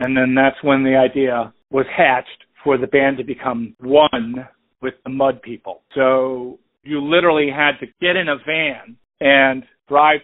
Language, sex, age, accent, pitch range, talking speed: English, male, 50-69, American, 130-150 Hz, 170 wpm